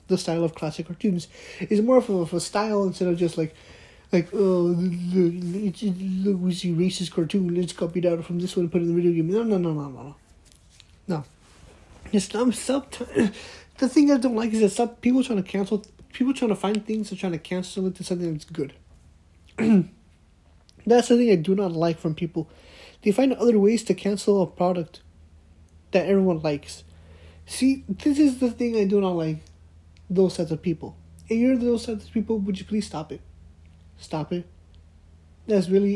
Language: English